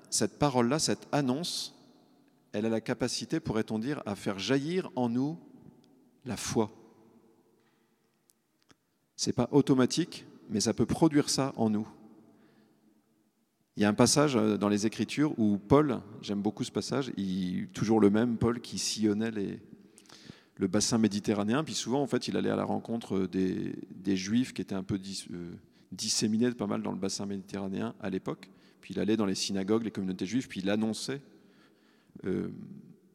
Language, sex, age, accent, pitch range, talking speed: French, male, 40-59, French, 105-130 Hz, 165 wpm